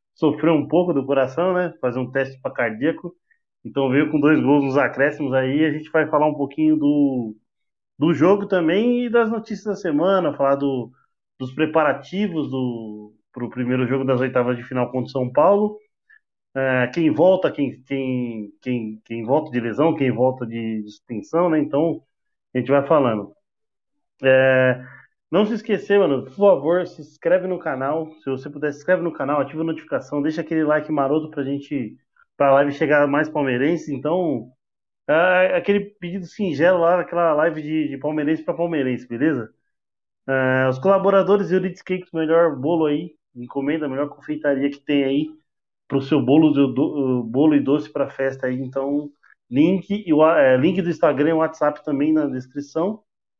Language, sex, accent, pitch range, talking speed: Portuguese, male, Brazilian, 135-170 Hz, 175 wpm